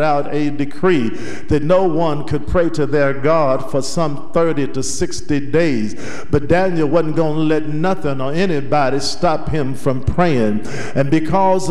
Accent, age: American, 50-69